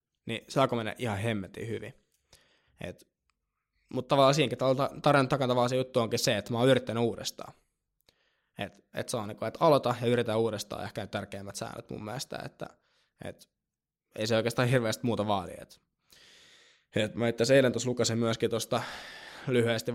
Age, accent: 20-39, native